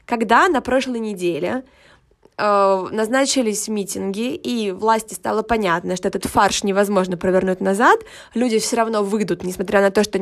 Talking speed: 145 wpm